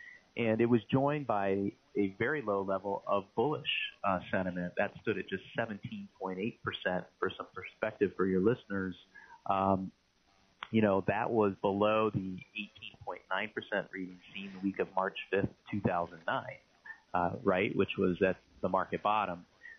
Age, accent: 30-49, American